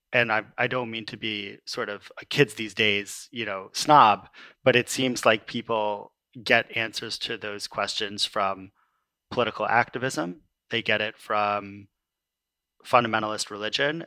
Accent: American